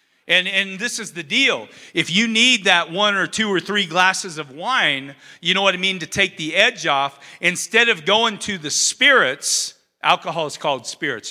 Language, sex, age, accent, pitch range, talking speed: English, male, 40-59, American, 165-215 Hz, 200 wpm